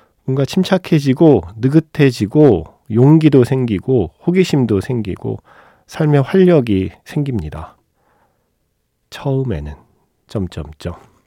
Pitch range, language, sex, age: 95-130 Hz, Korean, male, 40-59